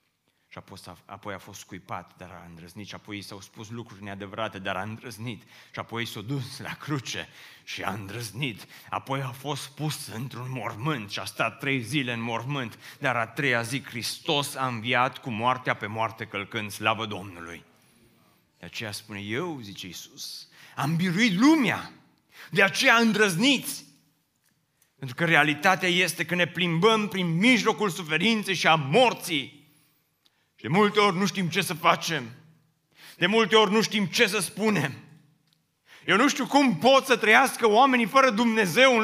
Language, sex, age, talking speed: Romanian, male, 30-49, 170 wpm